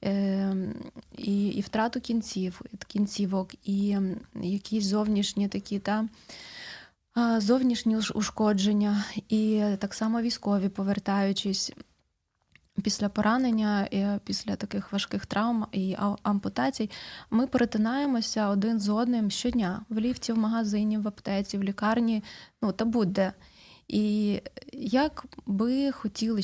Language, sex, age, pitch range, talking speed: Ukrainian, female, 20-39, 195-225 Hz, 105 wpm